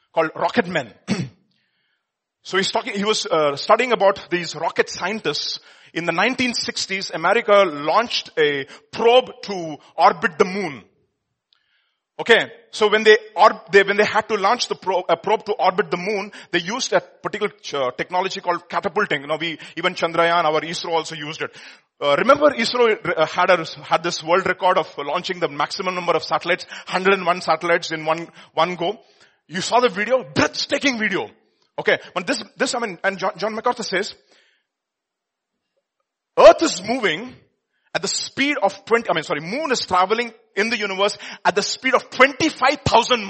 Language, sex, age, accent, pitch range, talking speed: English, male, 30-49, Indian, 175-235 Hz, 170 wpm